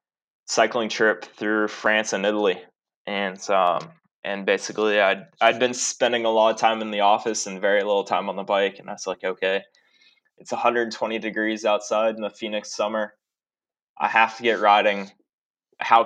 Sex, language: male, English